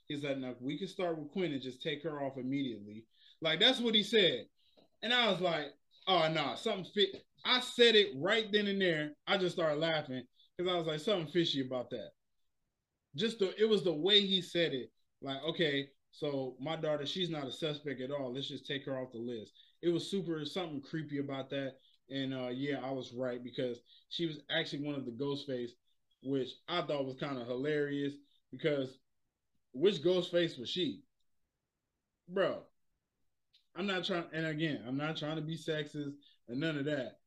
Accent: American